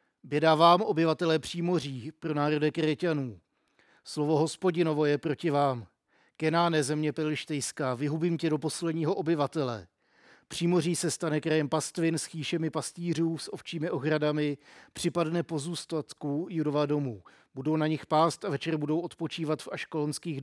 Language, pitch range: Czech, 145-165 Hz